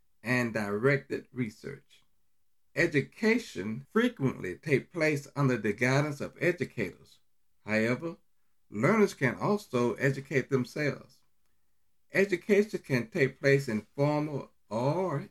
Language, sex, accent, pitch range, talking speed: English, male, American, 115-150 Hz, 100 wpm